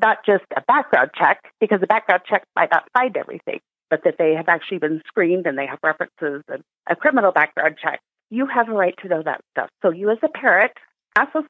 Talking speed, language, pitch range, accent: 230 wpm, English, 180-250 Hz, American